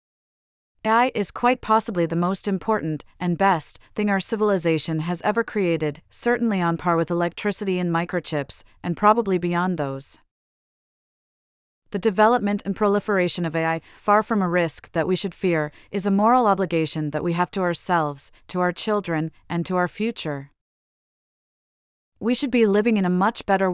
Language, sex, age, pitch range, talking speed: English, female, 30-49, 165-205 Hz, 160 wpm